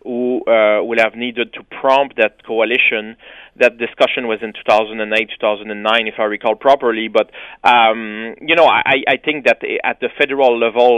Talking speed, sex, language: 210 wpm, male, English